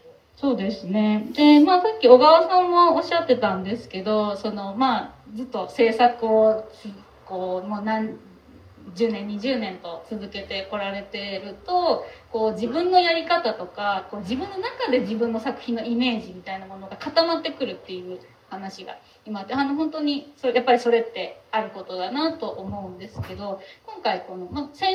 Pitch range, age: 205-295 Hz, 20-39